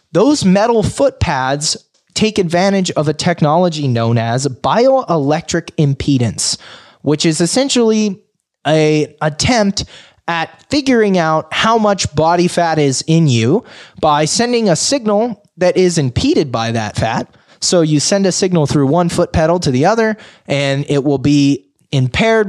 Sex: male